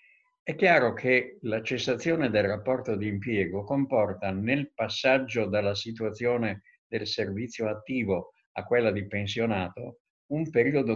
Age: 50-69